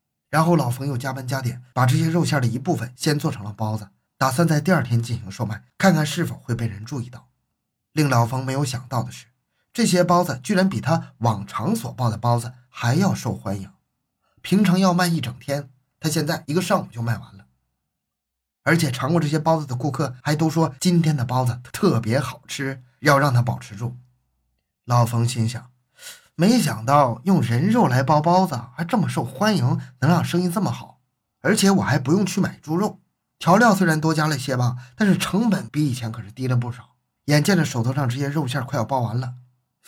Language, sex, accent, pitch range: Chinese, male, native, 120-160 Hz